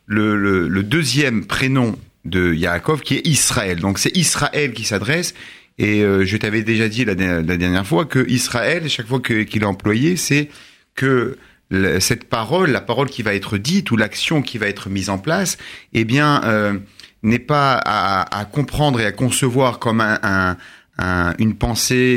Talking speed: 185 wpm